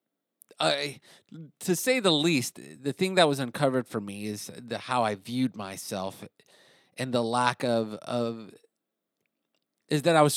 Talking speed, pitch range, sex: 160 wpm, 115-150 Hz, male